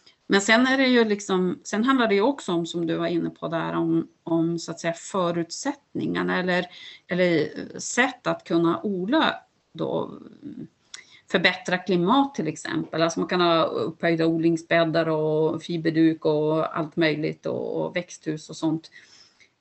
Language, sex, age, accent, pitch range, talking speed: Swedish, female, 40-59, native, 165-205 Hz, 150 wpm